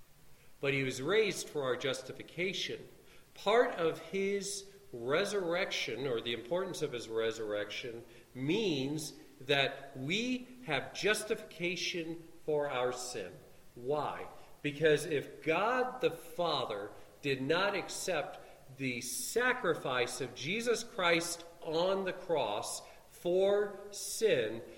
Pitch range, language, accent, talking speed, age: 125-195 Hz, English, American, 105 wpm, 40-59